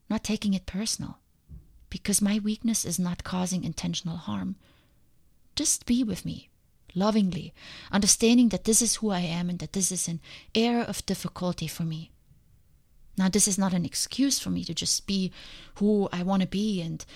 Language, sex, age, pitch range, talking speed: English, female, 30-49, 170-210 Hz, 180 wpm